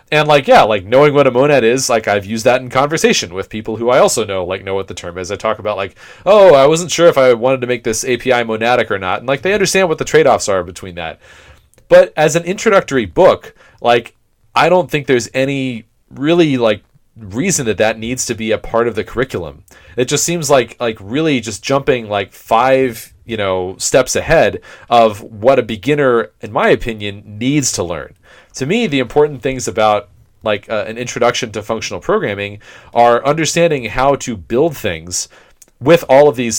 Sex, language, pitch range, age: male, English, 105-135 Hz, 30-49